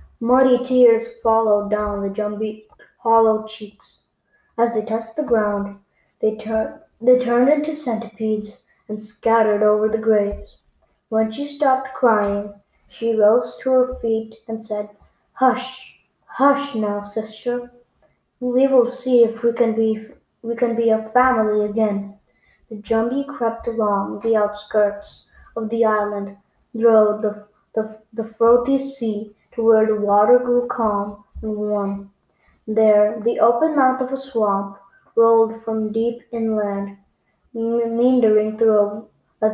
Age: 20-39